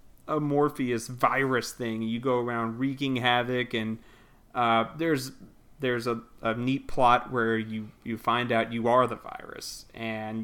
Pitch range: 120-185 Hz